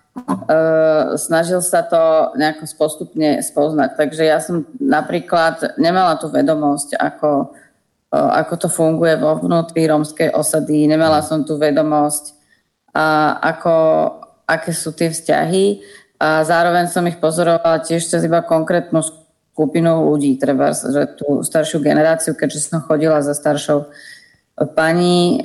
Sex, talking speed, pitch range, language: female, 130 wpm, 155-170 Hz, Slovak